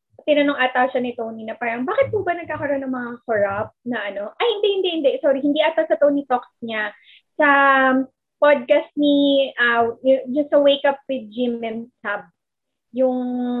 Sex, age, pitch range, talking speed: female, 20-39, 230-295 Hz, 170 wpm